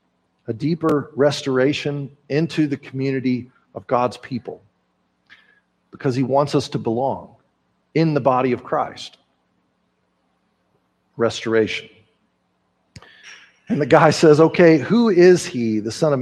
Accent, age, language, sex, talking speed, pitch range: American, 40-59, English, male, 120 wpm, 115-150 Hz